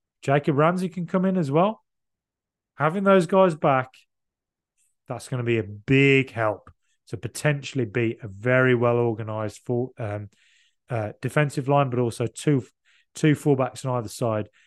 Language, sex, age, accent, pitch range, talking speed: English, male, 30-49, British, 115-145 Hz, 145 wpm